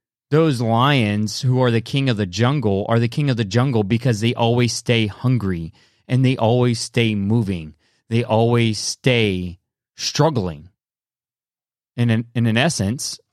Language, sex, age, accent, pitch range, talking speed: English, male, 30-49, American, 100-130 Hz, 150 wpm